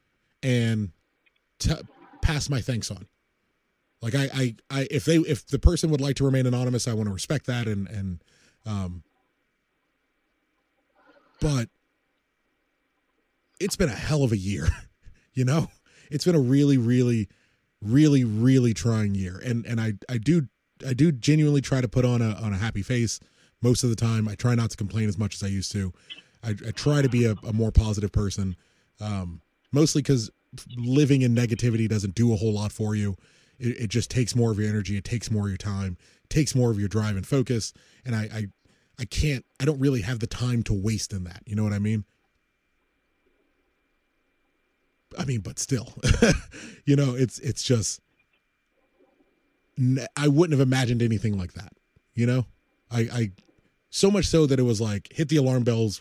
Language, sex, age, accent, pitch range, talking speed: English, male, 20-39, American, 105-130 Hz, 185 wpm